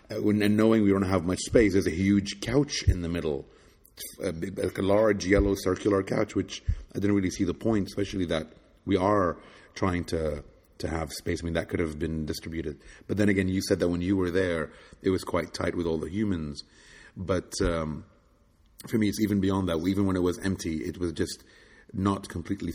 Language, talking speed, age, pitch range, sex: English, 205 wpm, 30-49, 80-95 Hz, male